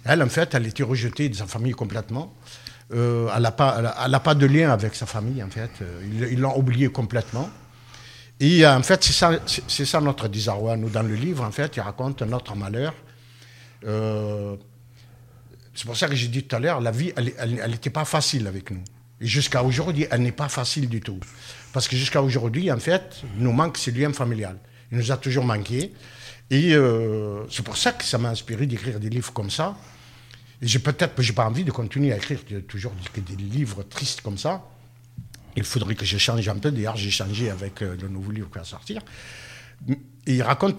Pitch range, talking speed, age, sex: 115-135 Hz, 210 wpm, 50-69, male